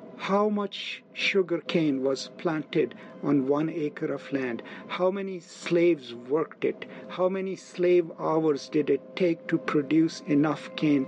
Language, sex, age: English, male, 50-69